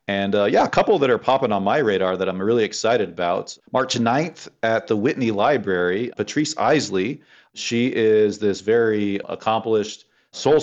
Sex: male